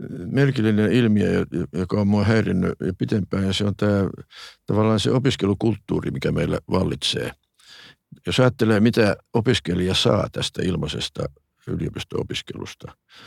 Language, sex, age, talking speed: Finnish, male, 60-79, 120 wpm